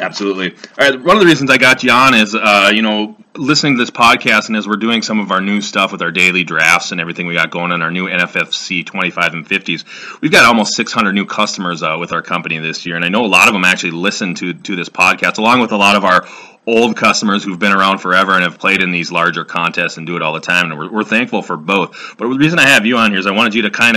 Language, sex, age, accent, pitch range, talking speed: English, male, 30-49, American, 90-110 Hz, 285 wpm